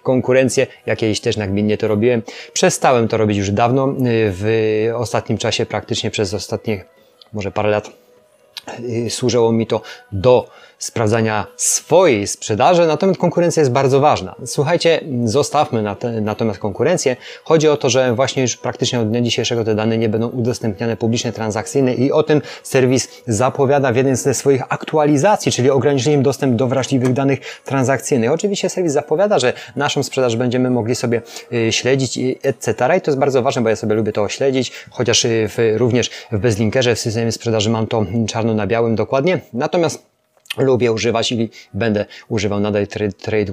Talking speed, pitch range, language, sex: 155 wpm, 110-135 Hz, Polish, male